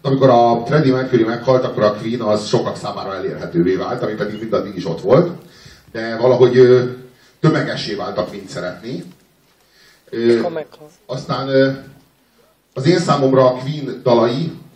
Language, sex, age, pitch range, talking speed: Hungarian, male, 30-49, 120-145 Hz, 140 wpm